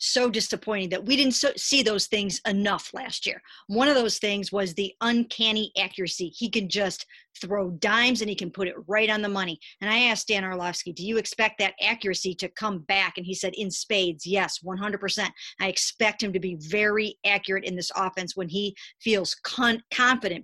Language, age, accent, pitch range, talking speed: English, 50-69, American, 190-230 Hz, 200 wpm